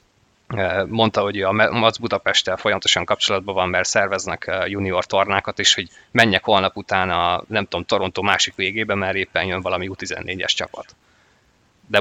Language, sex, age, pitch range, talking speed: Hungarian, male, 20-39, 95-110 Hz, 155 wpm